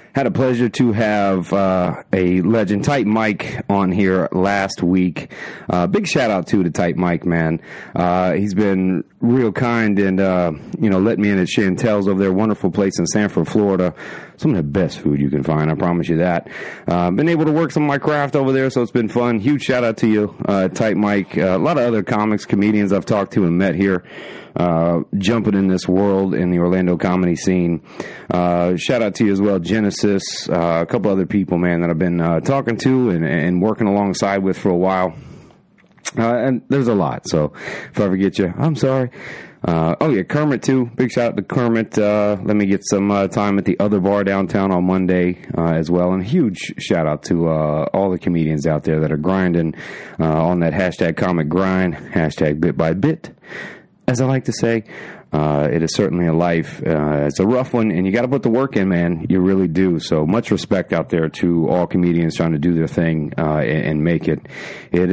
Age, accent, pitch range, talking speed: 30-49, American, 85-105 Hz, 220 wpm